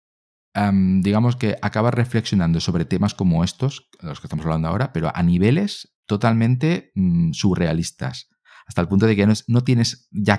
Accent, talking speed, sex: Spanish, 175 wpm, male